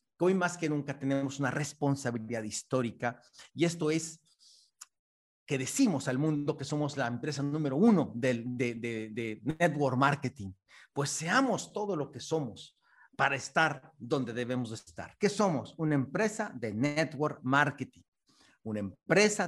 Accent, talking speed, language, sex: Mexican, 145 wpm, Spanish, male